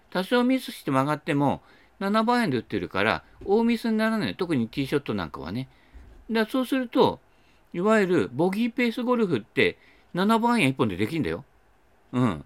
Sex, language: male, Japanese